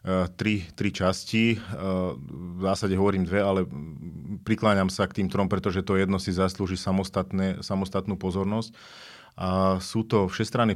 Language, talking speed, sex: Slovak, 135 wpm, male